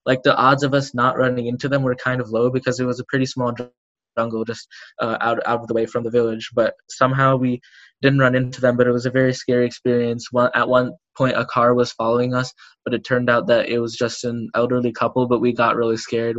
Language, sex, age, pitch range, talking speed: English, male, 10-29, 120-130 Hz, 255 wpm